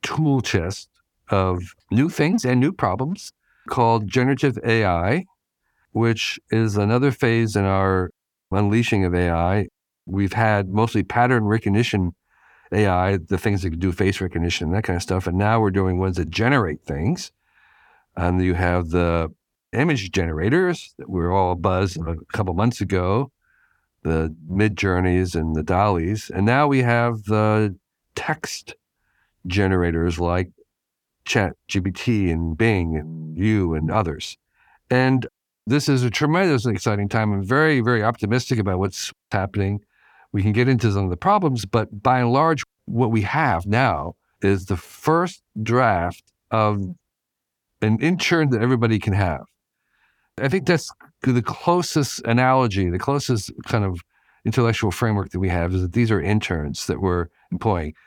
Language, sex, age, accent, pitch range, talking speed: English, male, 50-69, American, 90-125 Hz, 150 wpm